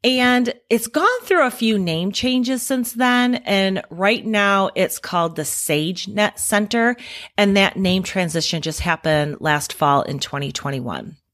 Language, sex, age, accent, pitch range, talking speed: English, female, 30-49, American, 155-220 Hz, 150 wpm